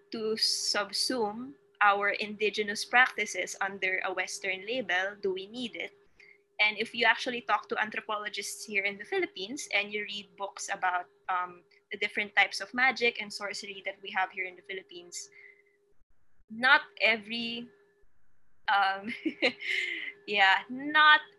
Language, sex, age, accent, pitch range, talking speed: Filipino, female, 20-39, native, 195-295 Hz, 135 wpm